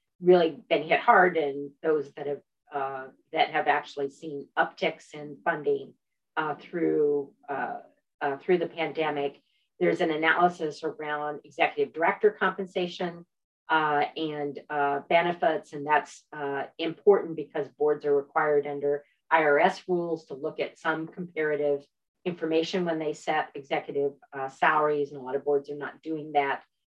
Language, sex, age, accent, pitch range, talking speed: English, female, 40-59, American, 145-170 Hz, 145 wpm